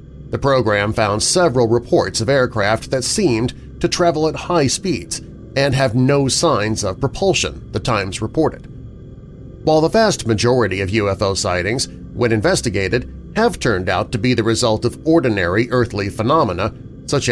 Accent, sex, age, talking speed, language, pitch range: American, male, 40-59, 150 wpm, English, 110-145 Hz